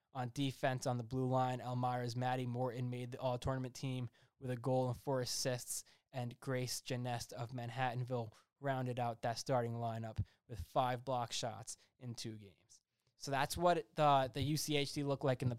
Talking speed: 175 wpm